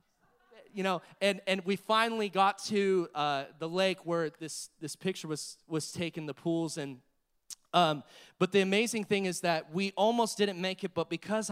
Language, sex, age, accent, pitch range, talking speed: English, male, 30-49, American, 155-190 Hz, 180 wpm